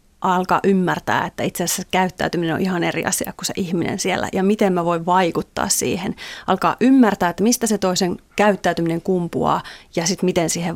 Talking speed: 180 wpm